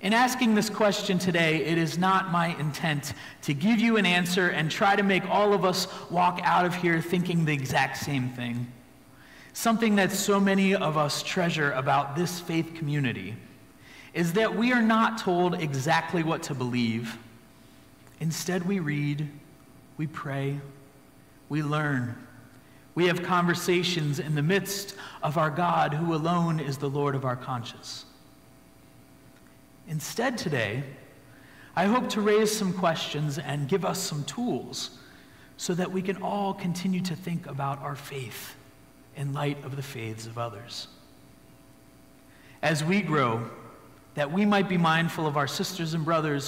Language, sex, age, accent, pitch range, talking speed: English, male, 40-59, American, 135-185 Hz, 155 wpm